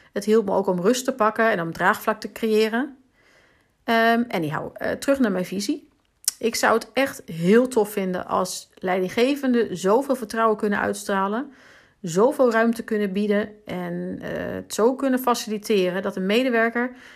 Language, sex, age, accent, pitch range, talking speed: Dutch, female, 40-59, Dutch, 200-240 Hz, 160 wpm